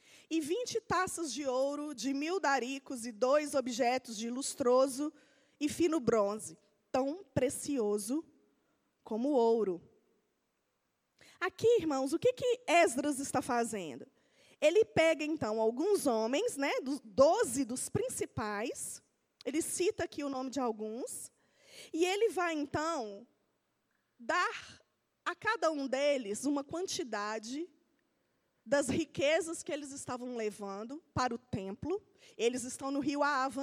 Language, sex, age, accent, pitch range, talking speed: Portuguese, female, 20-39, Brazilian, 245-320 Hz, 125 wpm